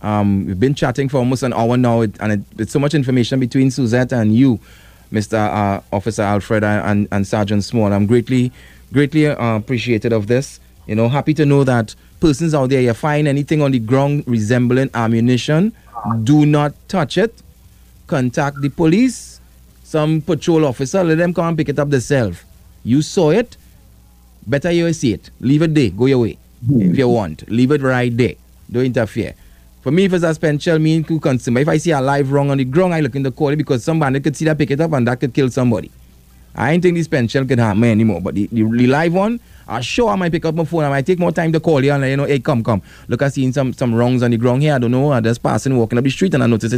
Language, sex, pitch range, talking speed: English, male, 115-150 Hz, 235 wpm